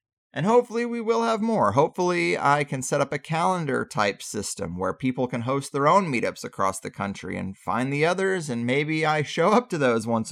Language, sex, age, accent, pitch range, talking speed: English, male, 30-49, American, 130-185 Hz, 210 wpm